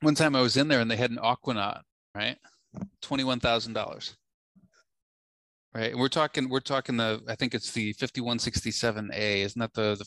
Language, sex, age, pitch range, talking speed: English, male, 30-49, 110-130 Hz, 175 wpm